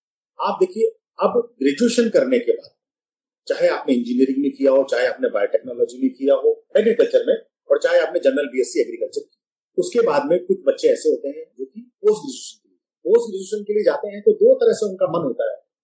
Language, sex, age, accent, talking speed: Hindi, male, 40-59, native, 210 wpm